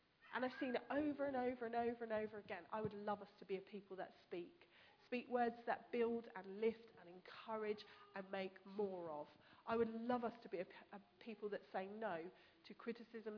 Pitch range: 195-250 Hz